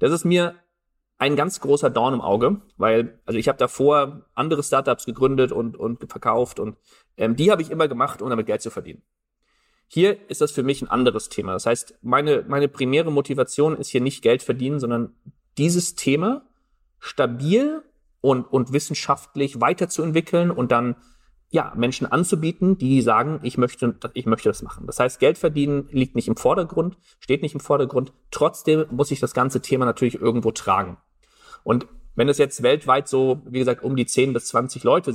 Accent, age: German, 40-59